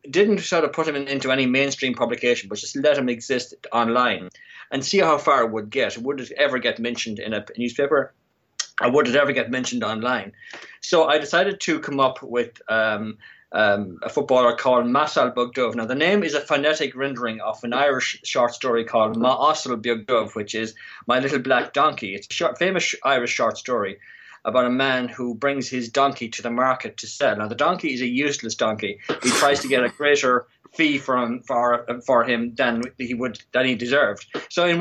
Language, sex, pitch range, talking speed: English, male, 120-140 Hz, 205 wpm